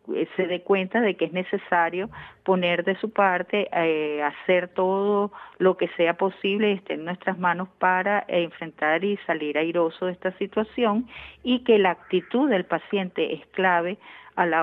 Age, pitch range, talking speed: 40-59, 165-195 Hz, 165 wpm